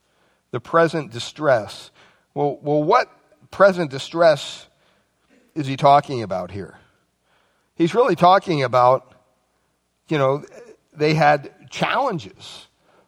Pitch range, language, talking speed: 125-165 Hz, English, 100 wpm